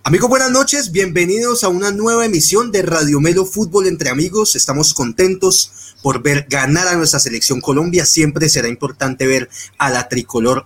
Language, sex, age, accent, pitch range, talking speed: Spanish, male, 30-49, Colombian, 130-165 Hz, 170 wpm